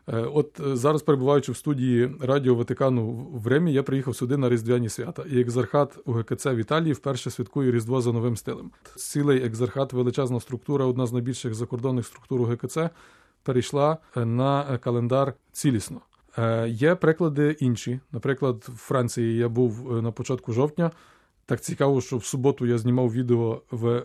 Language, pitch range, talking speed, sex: Ukrainian, 120-140 Hz, 150 wpm, male